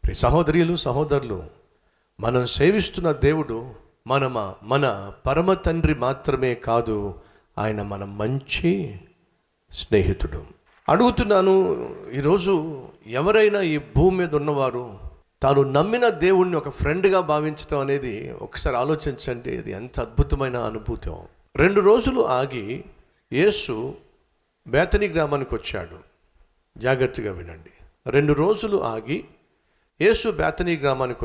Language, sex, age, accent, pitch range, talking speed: Telugu, male, 50-69, native, 105-175 Hz, 100 wpm